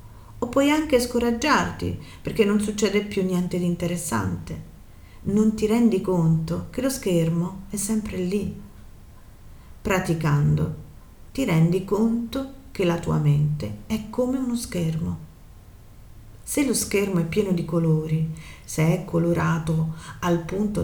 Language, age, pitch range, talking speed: Italian, 40-59, 155-200 Hz, 130 wpm